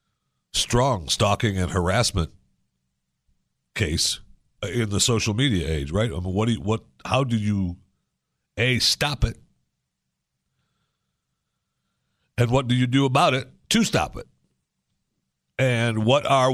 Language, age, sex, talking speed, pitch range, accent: English, 50-69, male, 130 wpm, 90-120 Hz, American